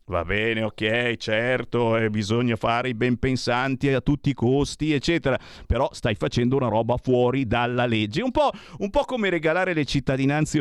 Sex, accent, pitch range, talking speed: male, native, 120-180 Hz, 175 wpm